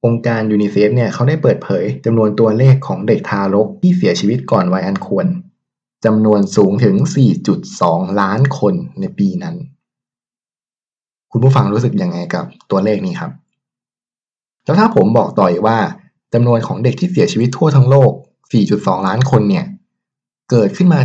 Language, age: Thai, 20-39